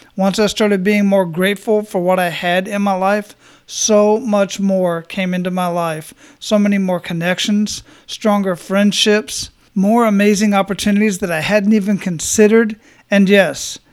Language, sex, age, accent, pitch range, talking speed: English, male, 40-59, American, 180-210 Hz, 155 wpm